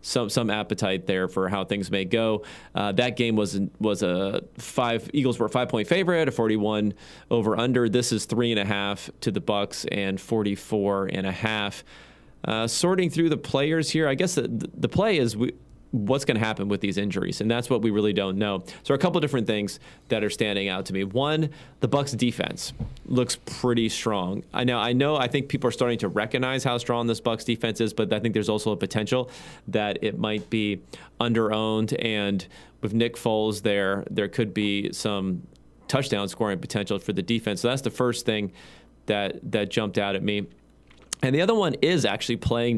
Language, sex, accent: English, male, American